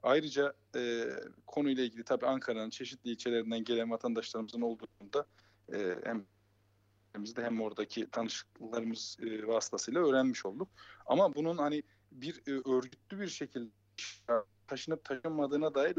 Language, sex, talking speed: German, male, 120 wpm